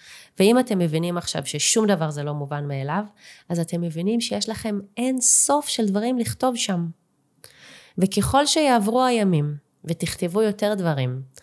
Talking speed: 140 wpm